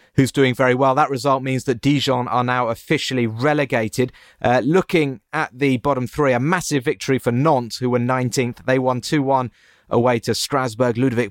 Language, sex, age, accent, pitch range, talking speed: English, male, 30-49, British, 115-140 Hz, 180 wpm